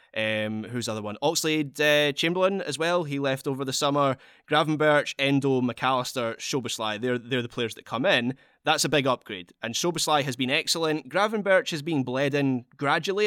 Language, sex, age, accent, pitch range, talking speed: English, male, 20-39, British, 120-150 Hz, 185 wpm